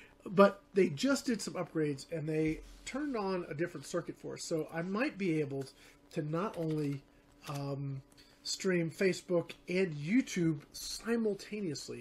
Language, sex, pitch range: English, male, 150-195 Hz